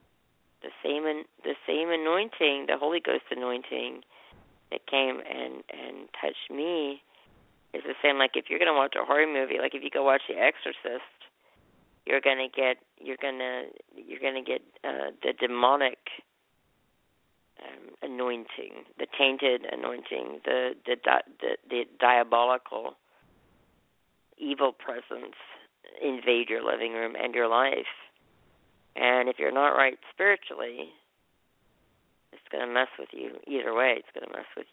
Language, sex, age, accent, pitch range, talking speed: English, female, 40-59, American, 120-140 Hz, 150 wpm